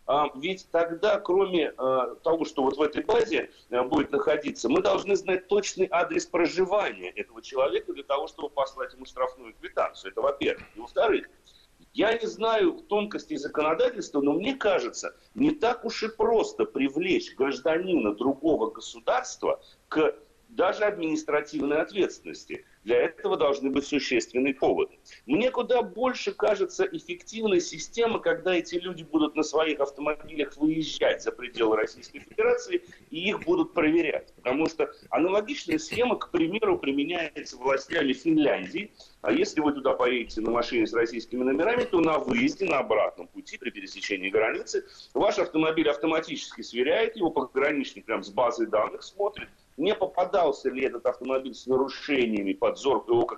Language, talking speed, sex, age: Russian, 145 wpm, male, 40-59